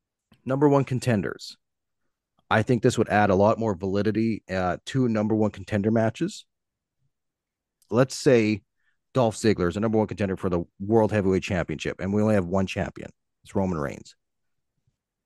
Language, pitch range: English, 95-125 Hz